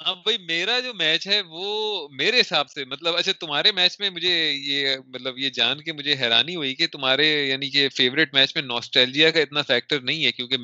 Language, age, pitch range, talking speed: Urdu, 30-49, 120-150 Hz, 195 wpm